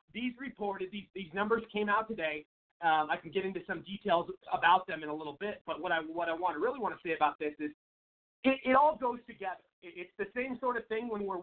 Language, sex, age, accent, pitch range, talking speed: English, male, 40-59, American, 180-225 Hz, 250 wpm